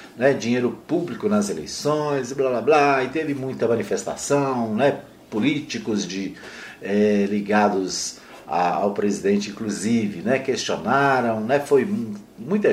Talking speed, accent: 115 wpm, Brazilian